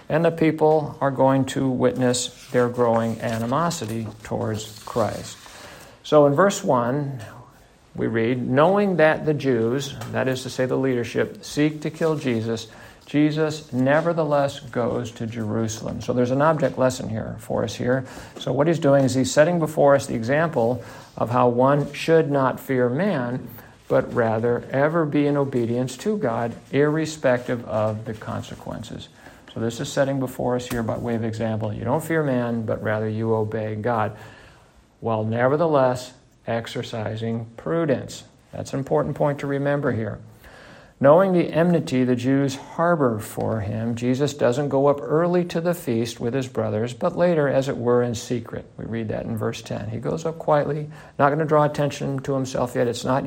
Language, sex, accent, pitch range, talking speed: English, male, American, 115-145 Hz, 170 wpm